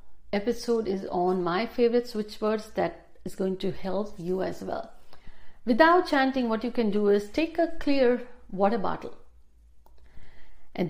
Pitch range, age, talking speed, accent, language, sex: 180-225 Hz, 50-69, 155 wpm, native, Hindi, female